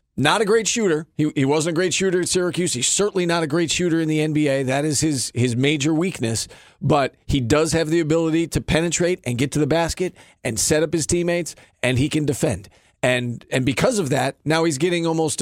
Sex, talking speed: male, 225 wpm